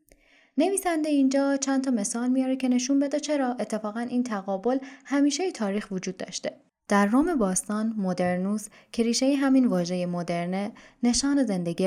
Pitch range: 180-255 Hz